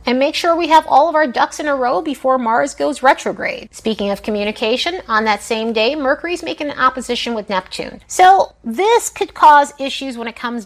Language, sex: English, female